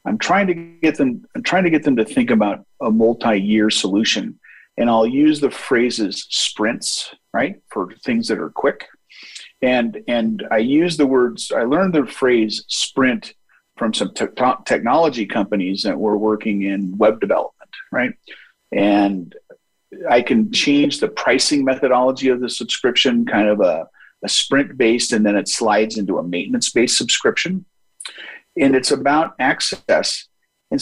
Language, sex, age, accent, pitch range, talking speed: English, male, 40-59, American, 110-170 Hz, 155 wpm